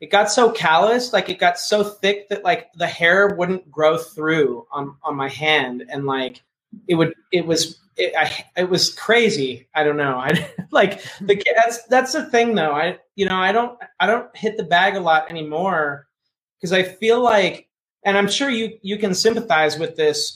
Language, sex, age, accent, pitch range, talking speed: English, male, 30-49, American, 155-200 Hz, 200 wpm